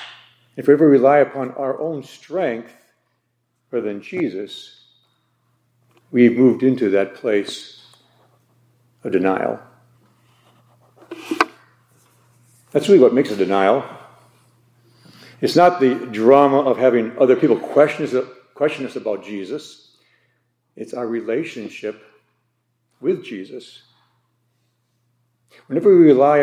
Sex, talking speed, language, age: male, 100 wpm, English, 50-69